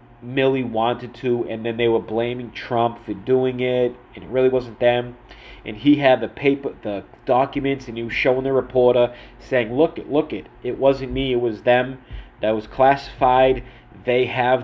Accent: American